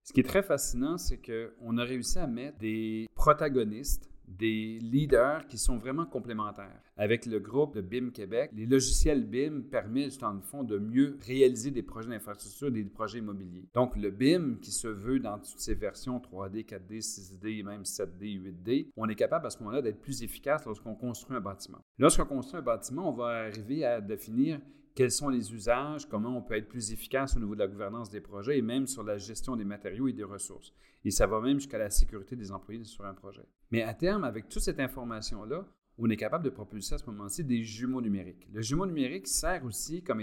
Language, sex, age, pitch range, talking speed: English, male, 40-59, 105-135 Hz, 210 wpm